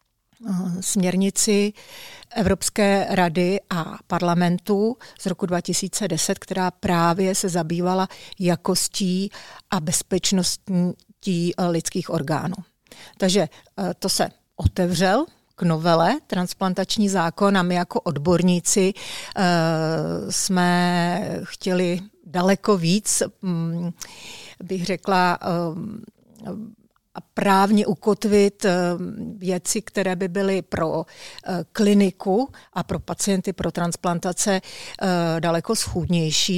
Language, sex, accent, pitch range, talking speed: Czech, female, native, 175-205 Hz, 85 wpm